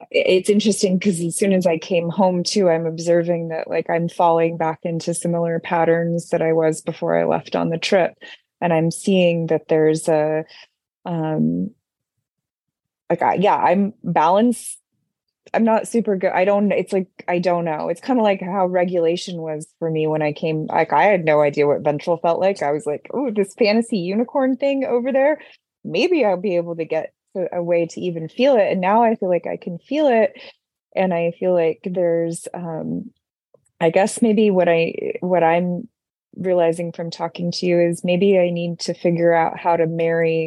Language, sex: English, female